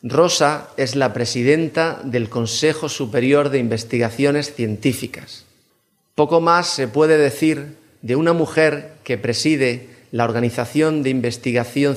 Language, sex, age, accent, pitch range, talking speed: Spanish, male, 30-49, Spanish, 115-145 Hz, 120 wpm